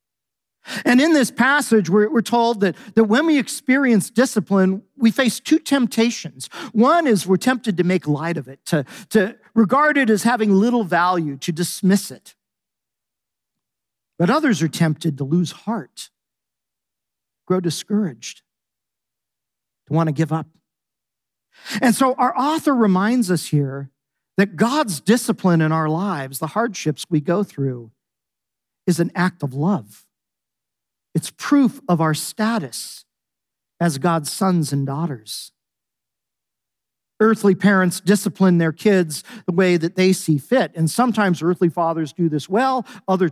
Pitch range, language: 160-225 Hz, English